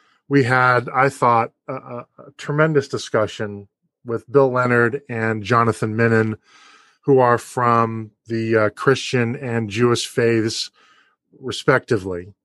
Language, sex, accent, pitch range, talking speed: English, male, American, 110-135 Hz, 120 wpm